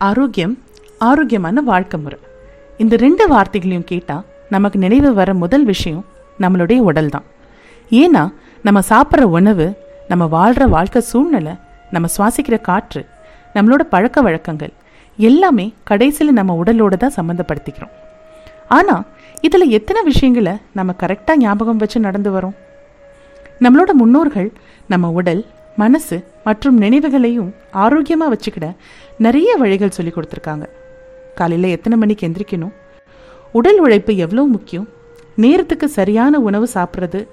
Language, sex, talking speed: Tamil, female, 115 wpm